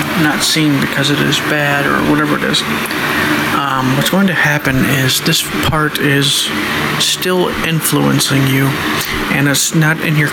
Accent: American